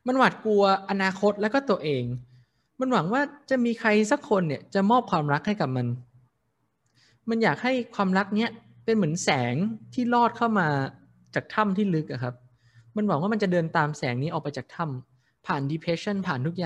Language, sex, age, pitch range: Thai, male, 20-39, 130-215 Hz